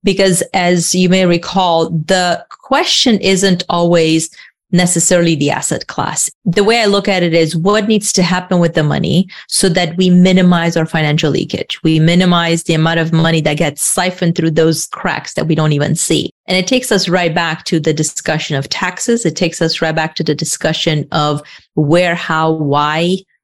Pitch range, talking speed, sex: 155-185 Hz, 190 wpm, female